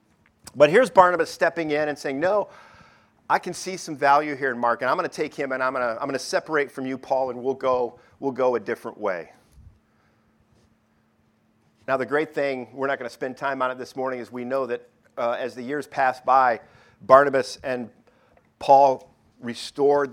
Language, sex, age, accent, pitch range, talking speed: English, male, 50-69, American, 125-155 Hz, 195 wpm